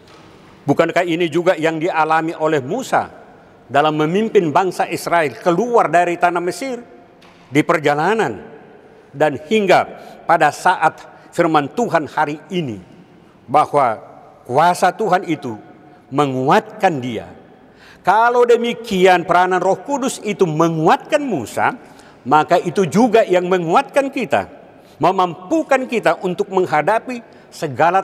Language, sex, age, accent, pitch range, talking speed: Indonesian, male, 50-69, native, 150-210 Hz, 105 wpm